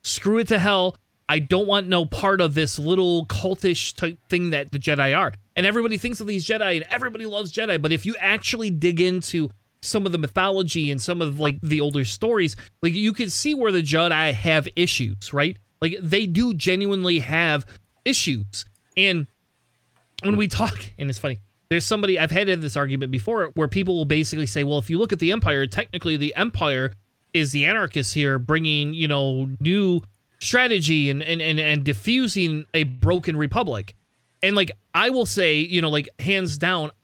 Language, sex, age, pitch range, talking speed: English, male, 30-49, 140-185 Hz, 190 wpm